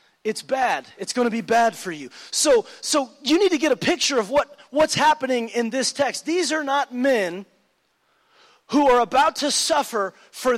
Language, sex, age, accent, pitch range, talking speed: English, male, 30-49, American, 205-285 Hz, 195 wpm